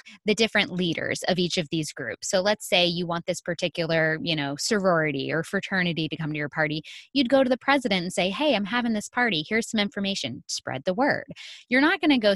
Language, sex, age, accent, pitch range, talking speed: English, female, 20-39, American, 155-210 Hz, 235 wpm